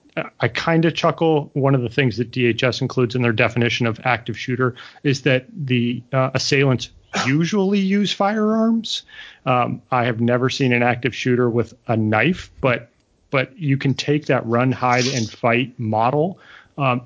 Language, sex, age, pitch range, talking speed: English, male, 30-49, 115-135 Hz, 170 wpm